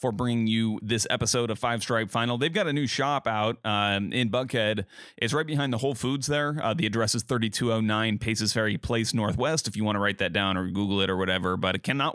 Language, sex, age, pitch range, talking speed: English, male, 30-49, 105-125 Hz, 240 wpm